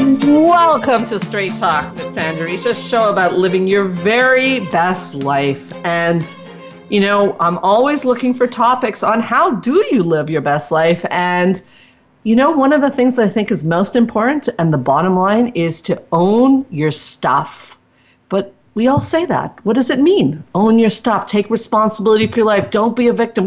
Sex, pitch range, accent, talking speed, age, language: female, 175-245 Hz, American, 185 wpm, 40-59, English